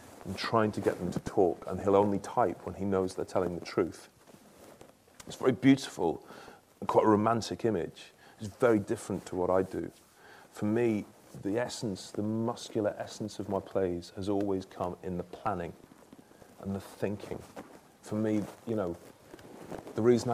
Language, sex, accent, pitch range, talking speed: English, male, British, 95-120 Hz, 170 wpm